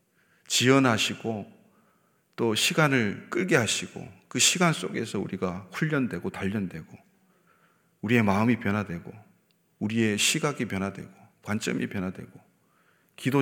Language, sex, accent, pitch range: Korean, male, native, 105-145 Hz